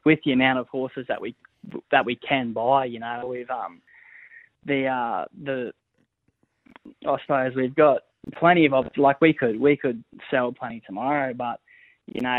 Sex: male